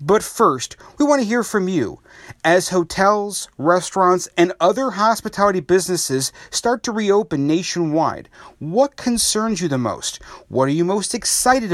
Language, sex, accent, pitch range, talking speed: English, male, American, 155-220 Hz, 150 wpm